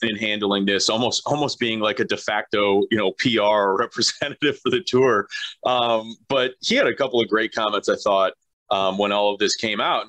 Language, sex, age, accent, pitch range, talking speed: English, male, 30-49, American, 110-130 Hz, 210 wpm